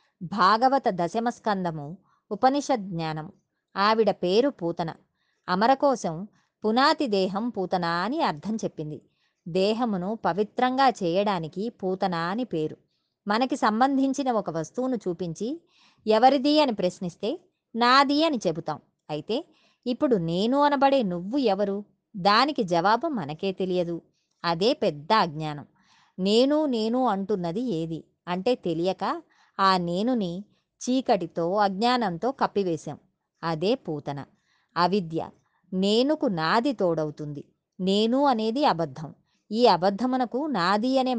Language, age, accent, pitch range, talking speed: Telugu, 20-39, native, 175-245 Hz, 100 wpm